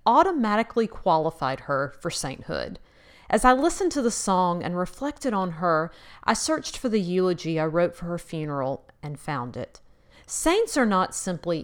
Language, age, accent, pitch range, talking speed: English, 40-59, American, 155-205 Hz, 165 wpm